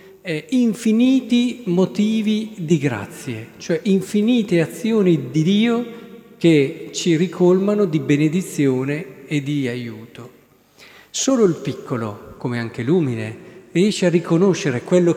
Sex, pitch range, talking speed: male, 135-195 Hz, 110 wpm